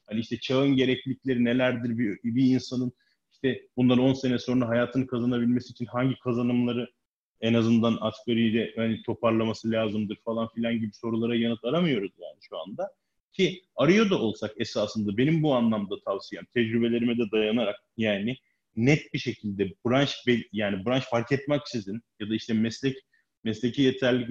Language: Turkish